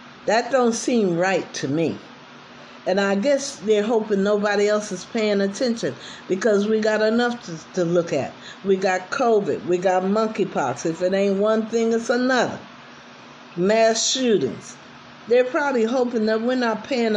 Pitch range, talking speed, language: 175-225 Hz, 160 wpm, English